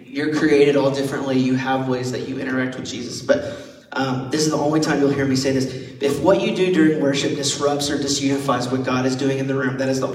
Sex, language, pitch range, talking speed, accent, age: male, English, 130-150 Hz, 255 wpm, American, 30-49